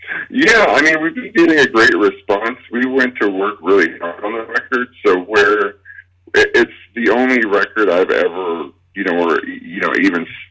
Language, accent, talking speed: English, American, 185 wpm